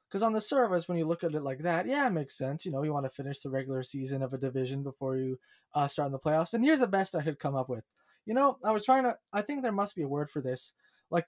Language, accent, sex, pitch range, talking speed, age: English, American, male, 150-185 Hz, 315 wpm, 20-39